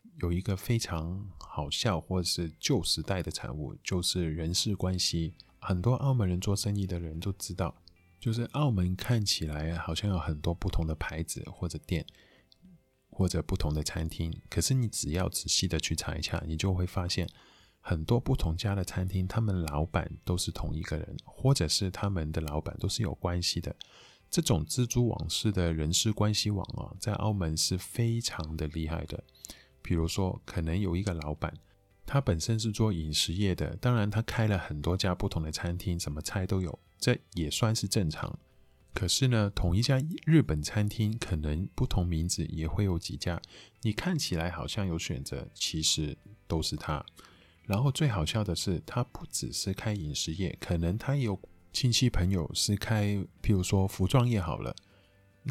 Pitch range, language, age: 85-105 Hz, Chinese, 20-39